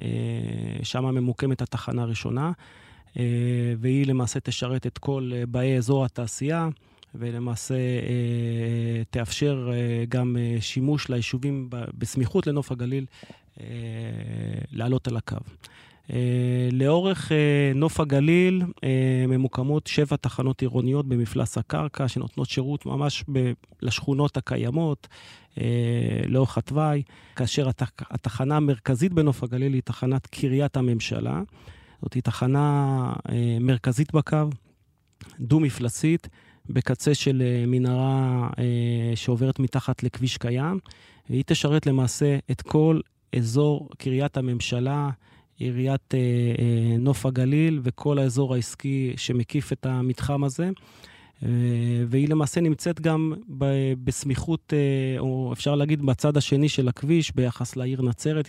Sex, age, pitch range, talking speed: male, 30-49, 120-140 Hz, 110 wpm